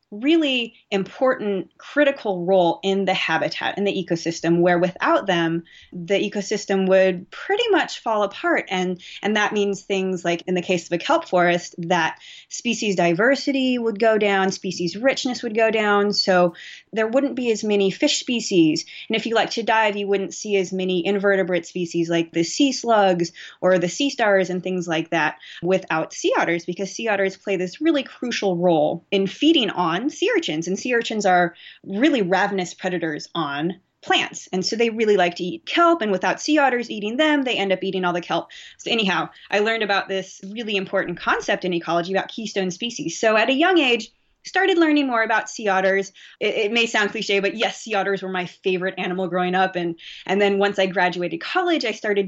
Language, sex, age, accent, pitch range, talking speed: English, female, 20-39, American, 180-230 Hz, 200 wpm